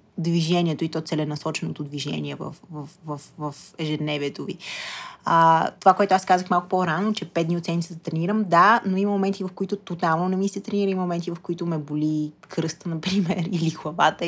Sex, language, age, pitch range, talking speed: female, Bulgarian, 20-39, 155-185 Hz, 195 wpm